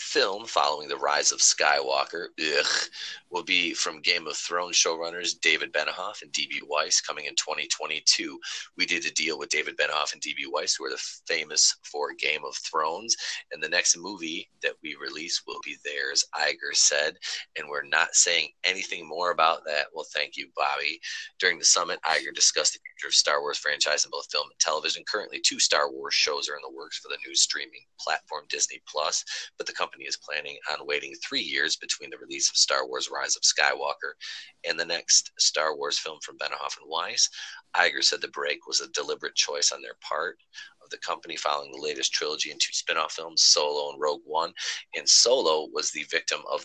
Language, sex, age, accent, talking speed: English, male, 30-49, American, 200 wpm